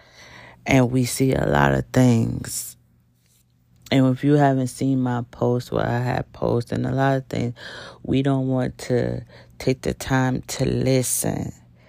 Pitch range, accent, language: 115-135 Hz, American, English